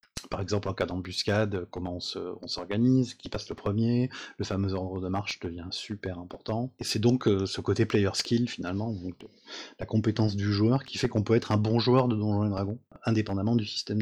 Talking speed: 215 wpm